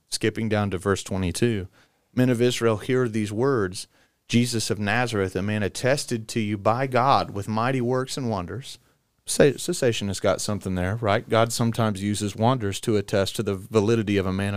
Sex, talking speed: male, 180 wpm